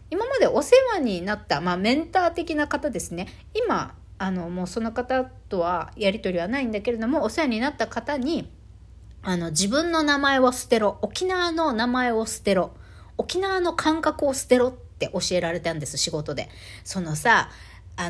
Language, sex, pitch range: Japanese, female, 175-290 Hz